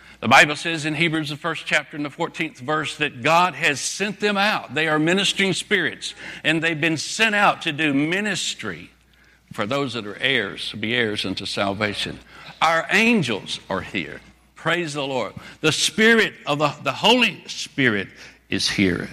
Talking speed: 175 wpm